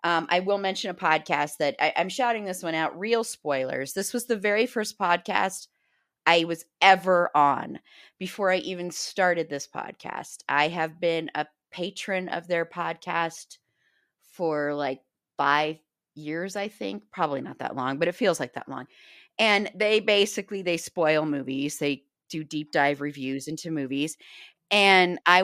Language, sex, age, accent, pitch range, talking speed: English, female, 30-49, American, 150-185 Hz, 165 wpm